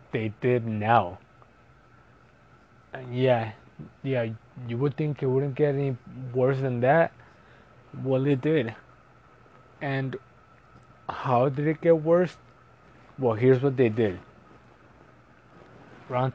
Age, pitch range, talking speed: 20-39, 115-135 Hz, 115 wpm